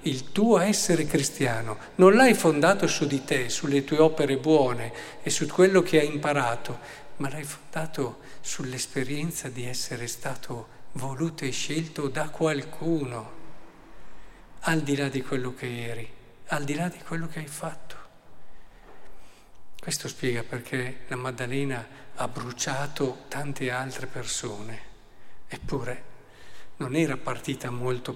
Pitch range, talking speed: 130-160 Hz, 130 wpm